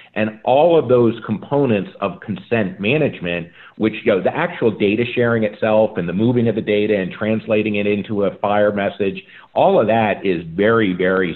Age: 50-69